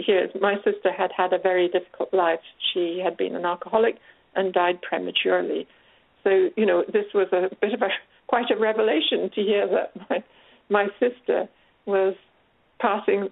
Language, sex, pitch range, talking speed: English, female, 200-280 Hz, 165 wpm